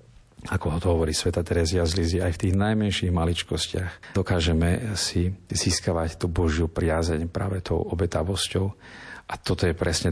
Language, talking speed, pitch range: Slovak, 155 wpm, 85-95 Hz